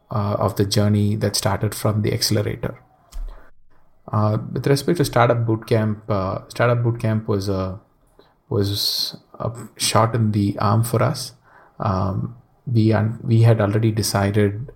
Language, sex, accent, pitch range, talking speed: English, male, Indian, 100-115 Hz, 140 wpm